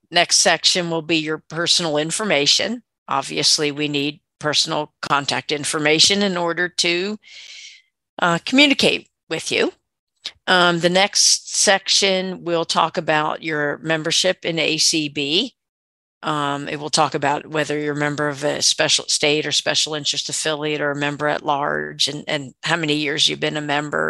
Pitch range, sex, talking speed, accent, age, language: 150-175 Hz, female, 155 wpm, American, 50-69, English